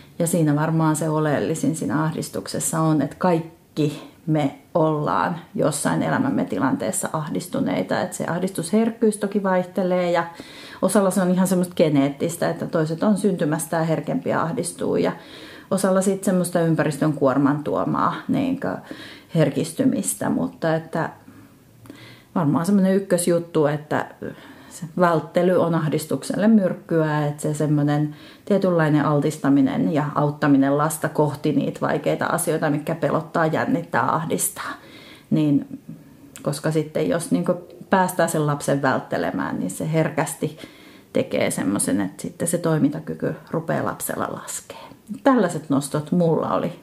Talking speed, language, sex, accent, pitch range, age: 125 wpm, Finnish, female, native, 150-180 Hz, 30-49